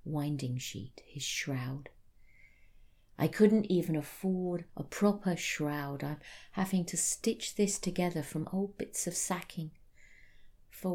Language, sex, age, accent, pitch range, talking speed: English, female, 40-59, British, 135-200 Hz, 125 wpm